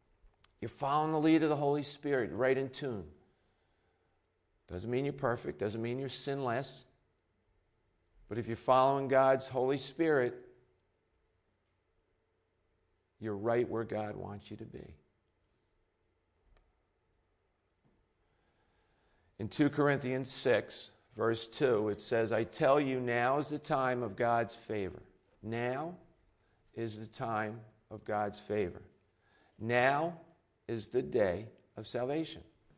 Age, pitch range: 50-69, 105-130 Hz